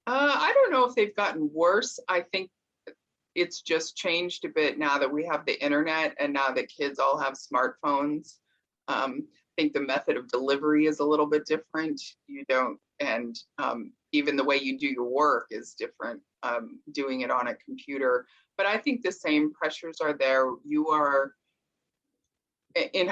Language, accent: English, American